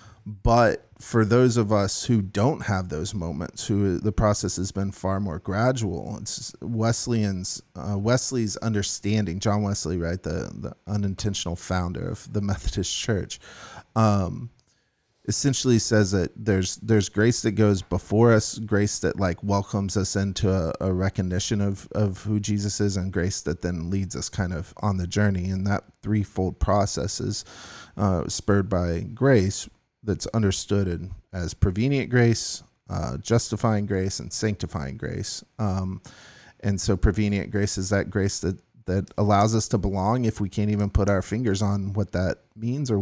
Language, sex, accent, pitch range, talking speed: English, male, American, 95-110 Hz, 160 wpm